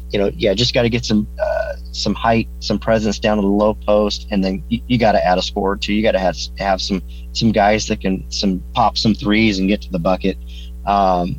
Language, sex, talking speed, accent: English, male, 260 wpm, American